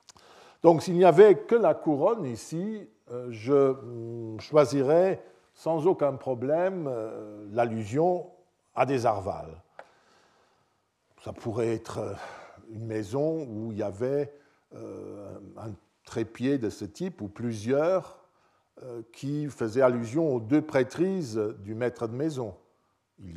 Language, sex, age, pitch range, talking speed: French, male, 50-69, 110-150 Hz, 115 wpm